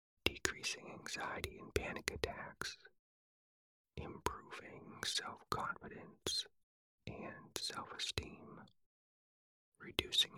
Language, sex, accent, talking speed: English, male, American, 60 wpm